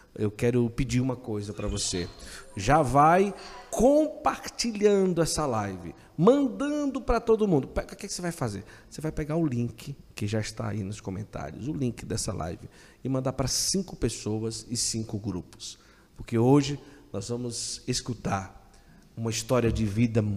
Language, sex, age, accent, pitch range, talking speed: Portuguese, male, 50-69, Brazilian, 110-140 Hz, 155 wpm